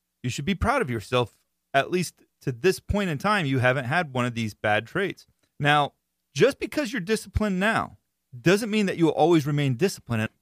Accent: American